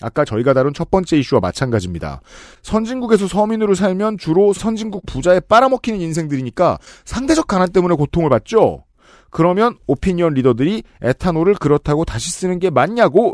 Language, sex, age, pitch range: Korean, male, 40-59, 135-210 Hz